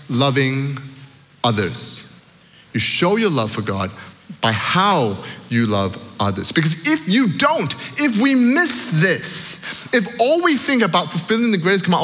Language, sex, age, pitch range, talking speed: English, male, 30-49, 140-225 Hz, 150 wpm